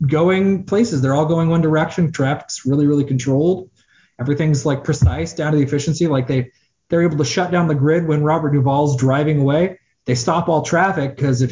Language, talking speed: English, 200 wpm